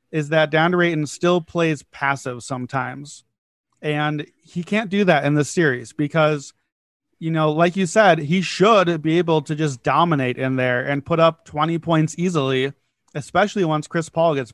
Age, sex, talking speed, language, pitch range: 30-49, male, 175 wpm, English, 145-170 Hz